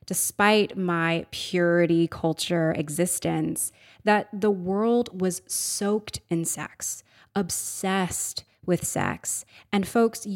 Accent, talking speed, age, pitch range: American, 100 wpm, 20-39, 150-205 Hz